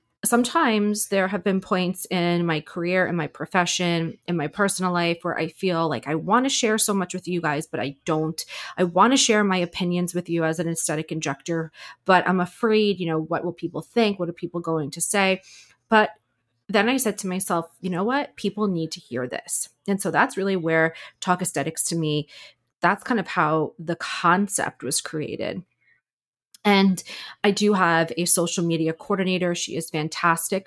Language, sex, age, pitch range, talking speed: English, female, 30-49, 160-200 Hz, 195 wpm